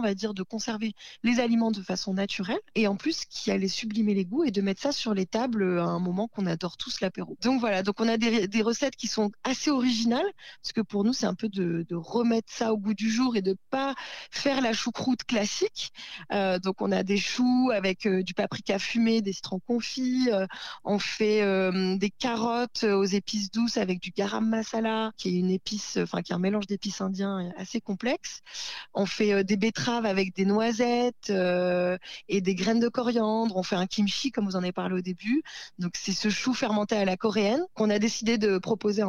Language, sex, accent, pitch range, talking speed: French, female, French, 195-230 Hz, 220 wpm